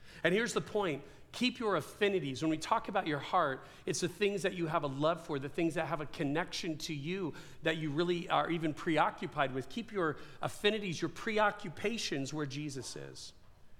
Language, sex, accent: English, male, American